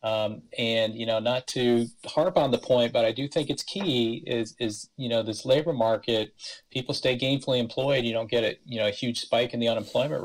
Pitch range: 110-125 Hz